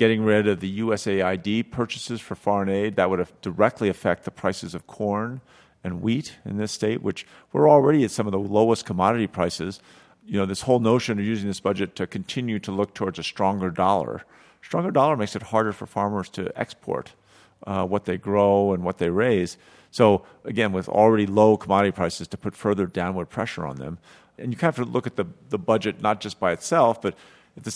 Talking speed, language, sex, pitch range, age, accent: 215 wpm, English, male, 95-115 Hz, 50-69, American